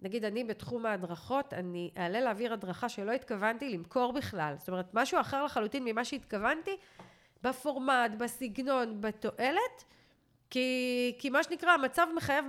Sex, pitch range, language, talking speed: female, 215-285 Hz, Hebrew, 135 wpm